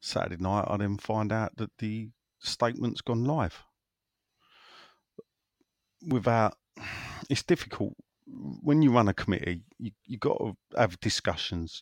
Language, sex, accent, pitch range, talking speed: English, male, British, 90-110 Hz, 120 wpm